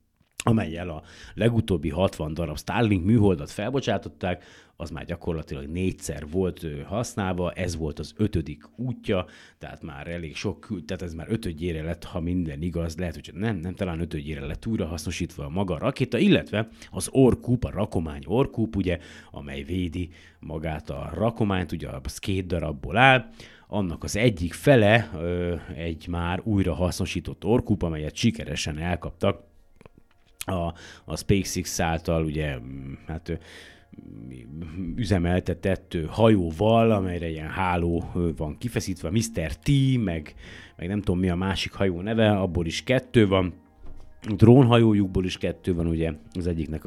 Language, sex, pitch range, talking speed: Hungarian, male, 80-105 Hz, 140 wpm